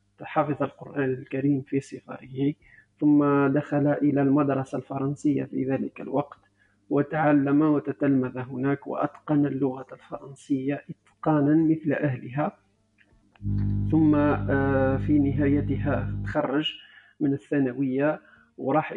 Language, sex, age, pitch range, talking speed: Arabic, male, 50-69, 135-150 Hz, 90 wpm